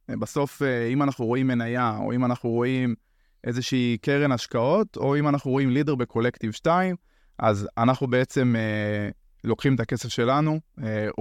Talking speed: 150 wpm